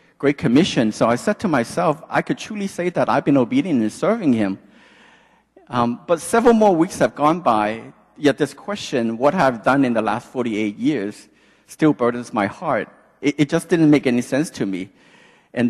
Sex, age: male, 50-69